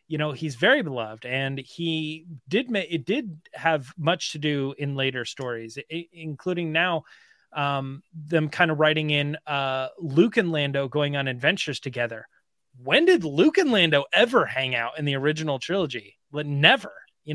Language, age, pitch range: English, 30-49, 130-170 Hz